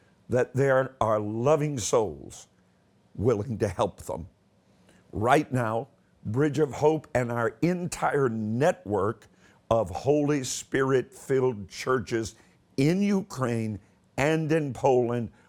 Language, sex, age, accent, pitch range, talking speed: English, male, 50-69, American, 110-145 Hz, 110 wpm